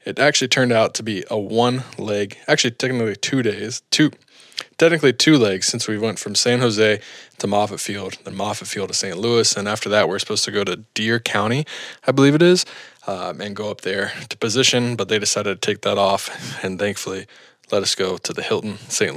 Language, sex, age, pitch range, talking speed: English, male, 20-39, 105-135 Hz, 215 wpm